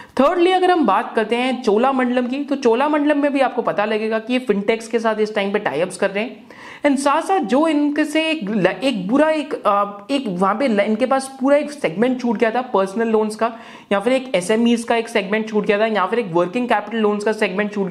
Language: Hindi